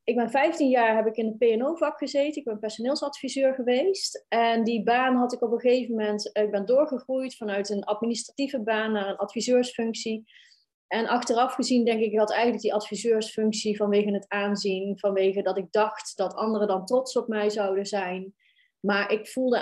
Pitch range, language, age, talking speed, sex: 210-255 Hz, Dutch, 20-39, 190 wpm, female